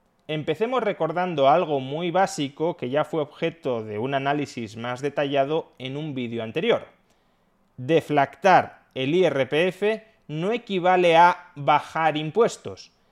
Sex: male